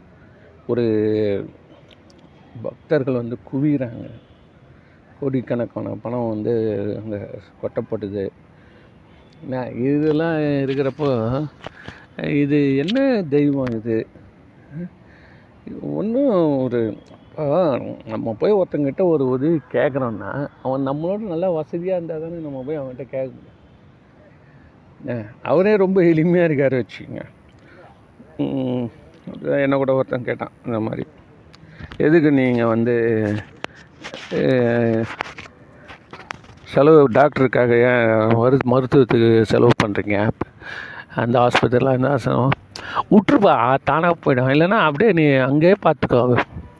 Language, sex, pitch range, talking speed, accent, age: Tamil, male, 115-150 Hz, 85 wpm, native, 50-69